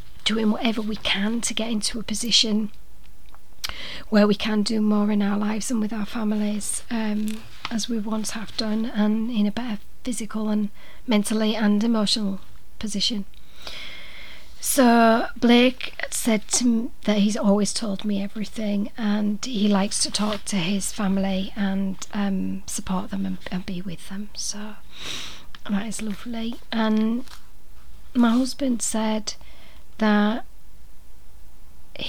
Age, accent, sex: 40-59, British, female